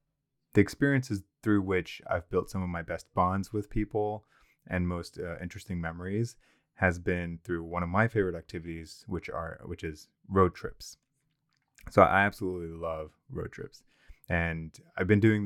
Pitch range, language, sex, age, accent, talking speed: 85-105 Hz, English, male, 30-49, American, 165 wpm